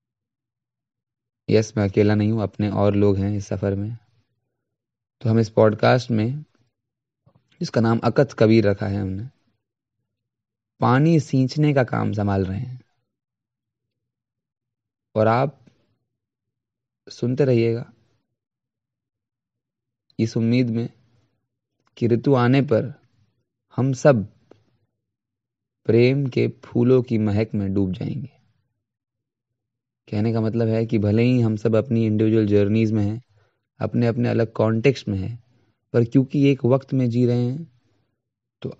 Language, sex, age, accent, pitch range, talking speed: Hindi, male, 20-39, native, 110-125 Hz, 125 wpm